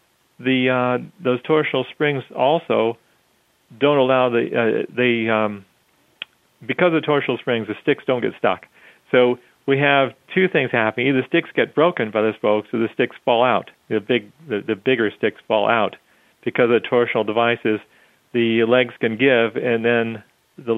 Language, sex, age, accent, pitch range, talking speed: English, male, 40-59, American, 105-130 Hz, 175 wpm